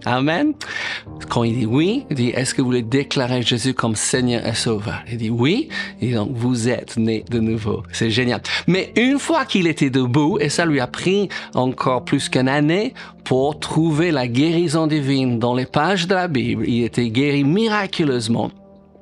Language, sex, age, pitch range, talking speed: French, male, 50-69, 125-175 Hz, 190 wpm